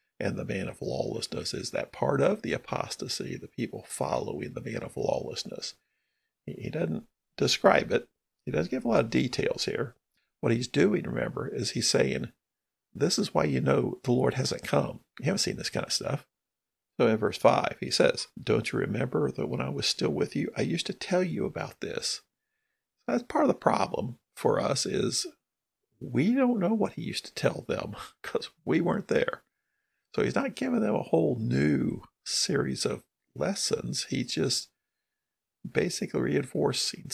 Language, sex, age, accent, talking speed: English, male, 50-69, American, 185 wpm